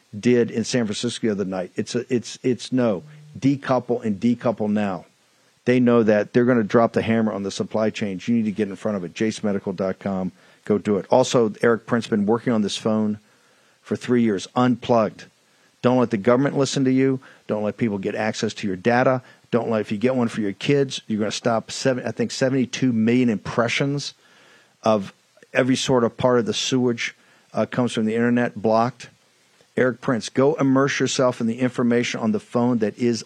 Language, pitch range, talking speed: English, 110-130 Hz, 210 wpm